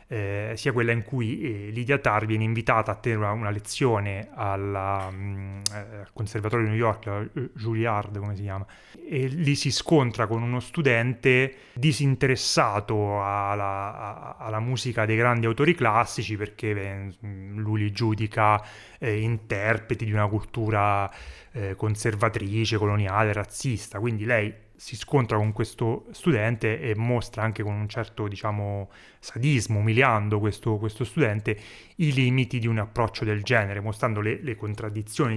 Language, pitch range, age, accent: Italian, 105-130 Hz, 30-49, native